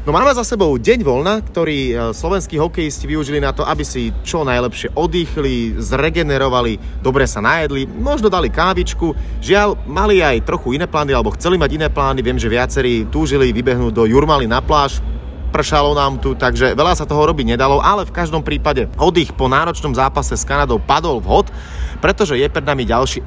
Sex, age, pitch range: male, 30-49, 120-160 Hz